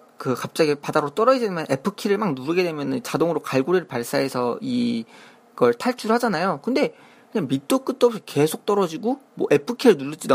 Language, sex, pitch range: Korean, male, 135-220 Hz